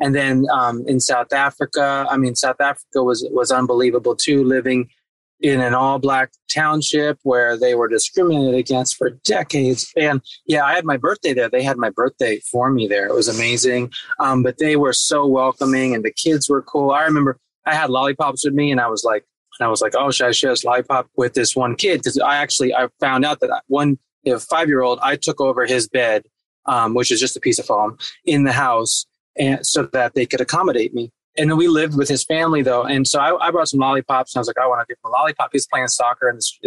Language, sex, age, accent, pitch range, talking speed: English, male, 20-39, American, 125-145 Hz, 235 wpm